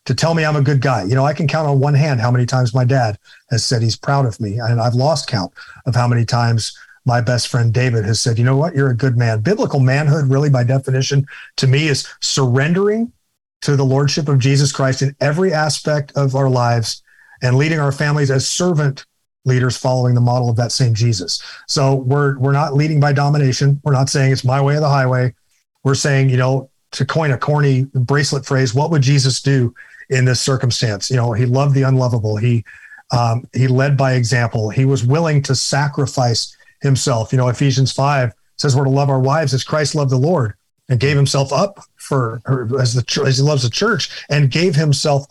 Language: English